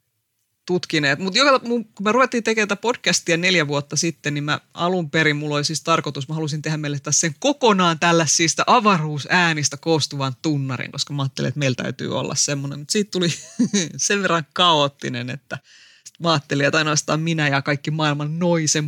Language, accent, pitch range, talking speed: Finnish, native, 145-180 Hz, 170 wpm